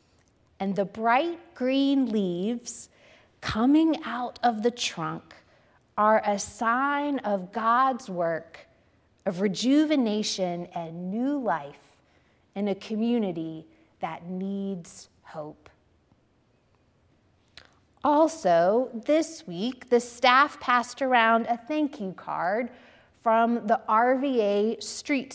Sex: female